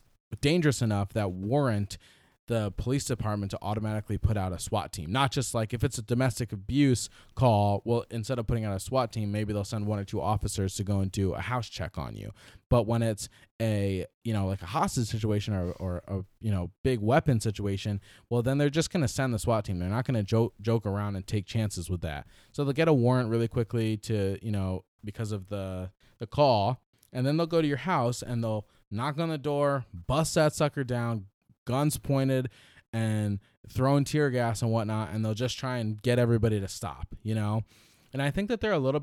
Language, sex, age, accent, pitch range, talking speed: English, male, 20-39, American, 105-130 Hz, 225 wpm